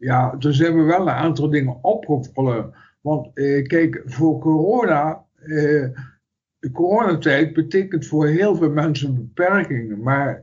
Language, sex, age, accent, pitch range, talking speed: Dutch, male, 60-79, Dutch, 130-160 Hz, 140 wpm